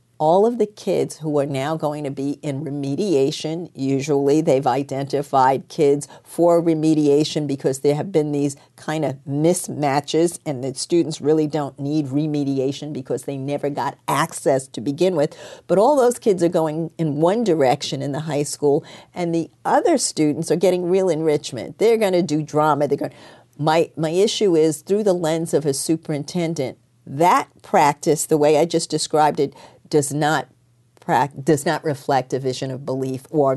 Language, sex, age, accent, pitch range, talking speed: English, female, 50-69, American, 140-165 Hz, 175 wpm